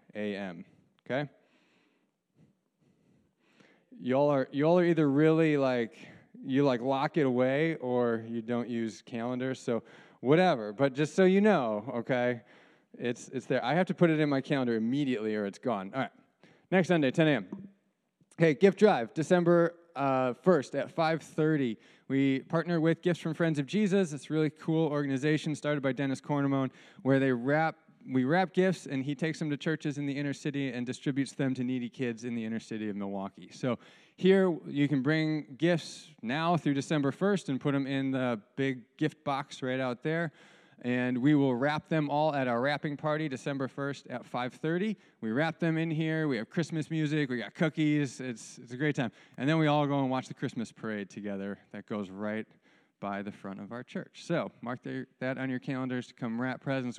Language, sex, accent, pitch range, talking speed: English, male, American, 125-160 Hz, 195 wpm